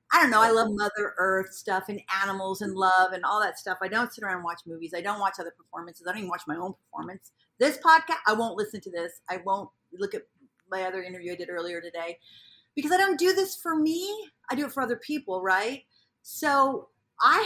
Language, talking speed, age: English, 235 wpm, 40-59